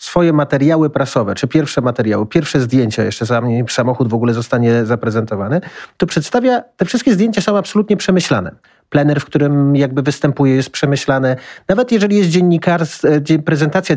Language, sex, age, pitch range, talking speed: Polish, male, 40-59, 120-150 Hz, 145 wpm